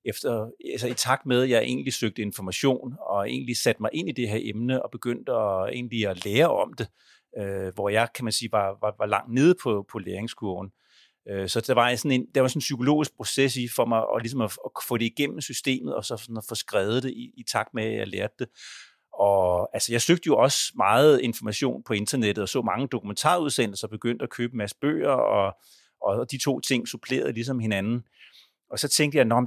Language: Danish